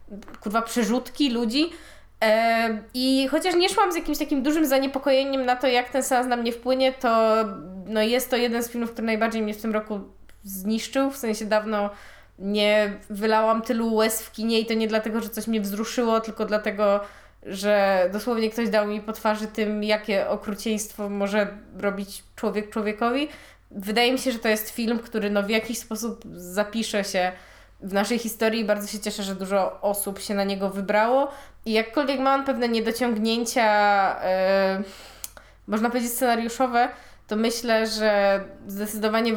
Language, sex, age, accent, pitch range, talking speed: Polish, female, 20-39, native, 210-240 Hz, 160 wpm